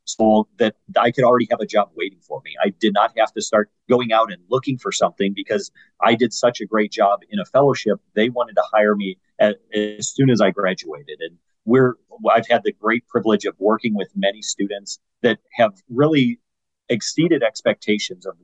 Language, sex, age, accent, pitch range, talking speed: English, male, 40-59, American, 110-140 Hz, 200 wpm